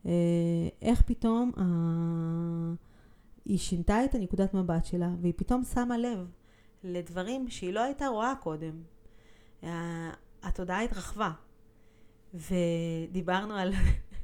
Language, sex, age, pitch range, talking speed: Hebrew, female, 30-49, 165-195 Hz, 100 wpm